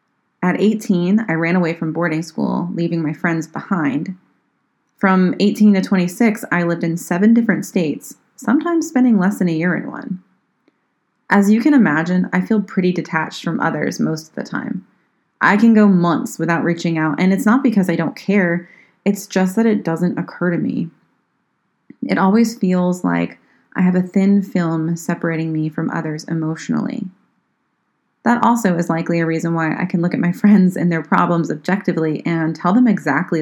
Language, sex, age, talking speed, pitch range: English, female, 20-39, 180 wpm, 165-205 Hz